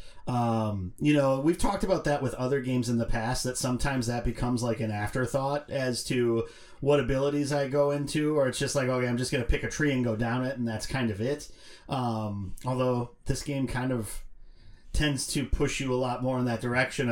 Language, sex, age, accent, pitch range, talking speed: English, male, 30-49, American, 120-145 Hz, 220 wpm